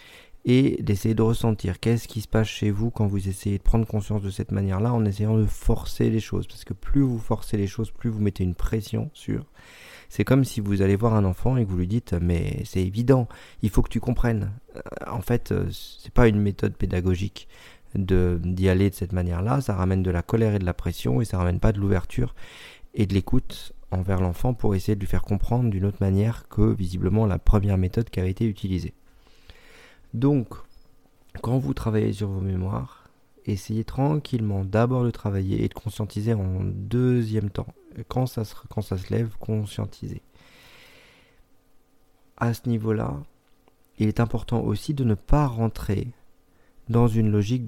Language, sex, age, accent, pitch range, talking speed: French, male, 40-59, French, 95-115 Hz, 190 wpm